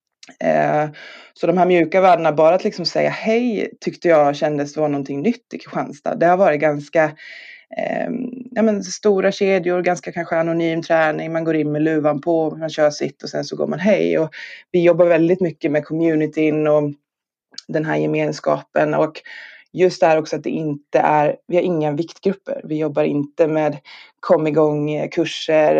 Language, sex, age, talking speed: Swedish, female, 20-39, 175 wpm